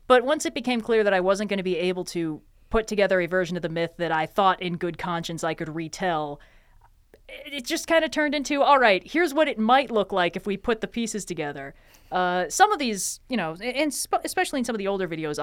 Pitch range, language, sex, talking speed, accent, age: 180-245 Hz, English, female, 250 wpm, American, 30-49